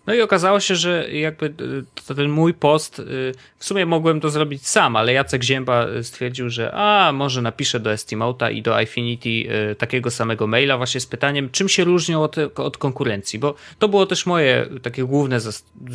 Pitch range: 120-155 Hz